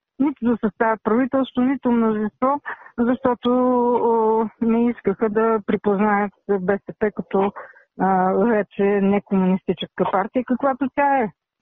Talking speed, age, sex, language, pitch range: 110 wpm, 50-69, female, Bulgarian, 200-250 Hz